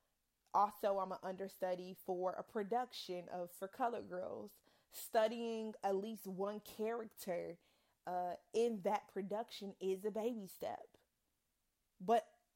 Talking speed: 120 wpm